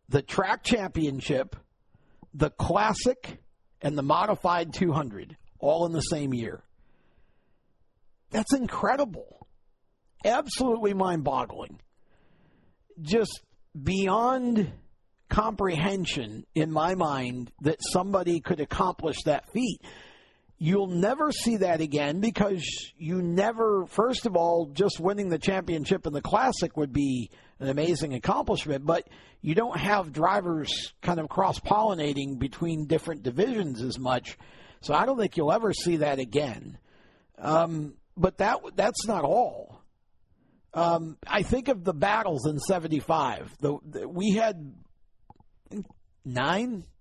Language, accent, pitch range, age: English, American, 150-205 Hz, 50-69